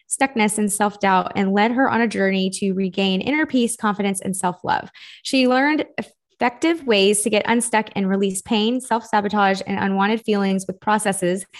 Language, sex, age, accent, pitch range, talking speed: English, female, 20-39, American, 190-235 Hz, 165 wpm